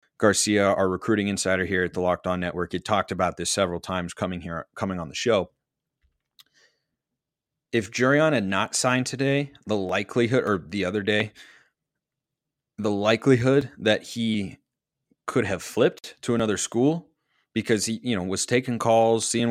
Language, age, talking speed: English, 30-49, 160 wpm